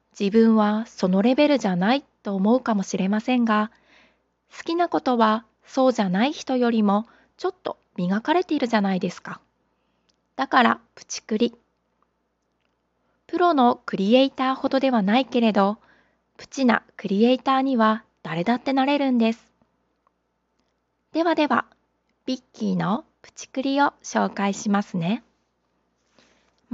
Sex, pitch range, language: female, 200-265 Hz, Japanese